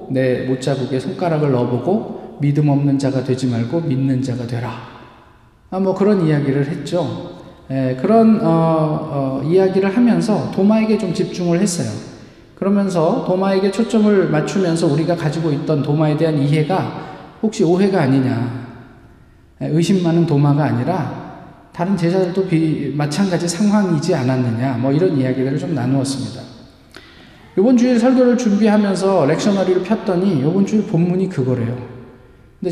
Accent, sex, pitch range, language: native, male, 135-195 Hz, Korean